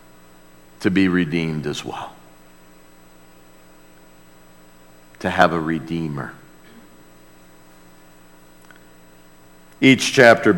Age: 50-69